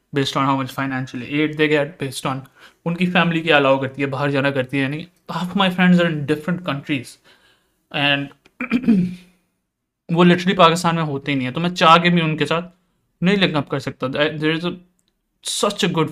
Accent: Indian